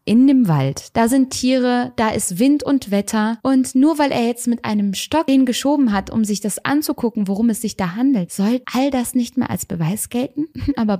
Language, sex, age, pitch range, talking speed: German, female, 20-39, 180-220 Hz, 220 wpm